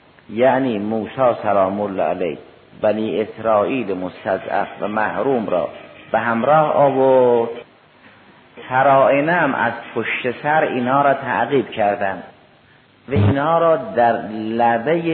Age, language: 50-69, Persian